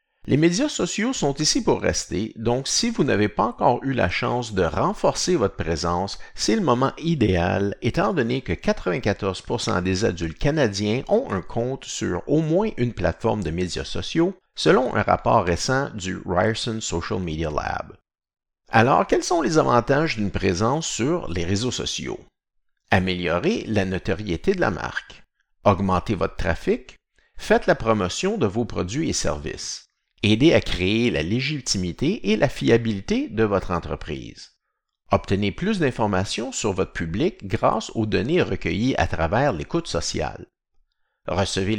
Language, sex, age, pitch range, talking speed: French, male, 50-69, 95-150 Hz, 150 wpm